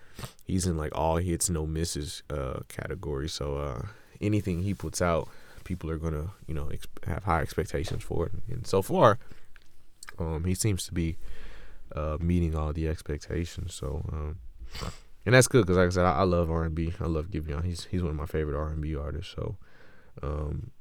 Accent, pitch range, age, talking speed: American, 80-95 Hz, 20-39, 195 wpm